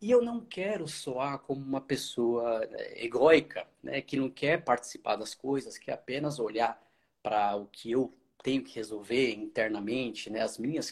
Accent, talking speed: Brazilian, 165 wpm